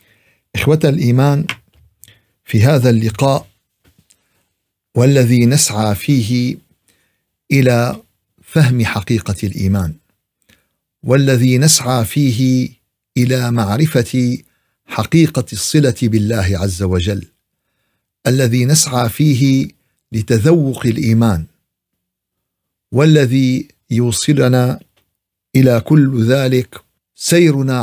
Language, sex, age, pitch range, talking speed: Arabic, male, 50-69, 110-140 Hz, 70 wpm